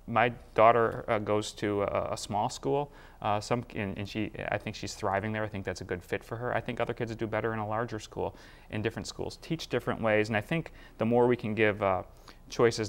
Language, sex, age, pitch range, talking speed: English, male, 30-49, 100-115 Hz, 250 wpm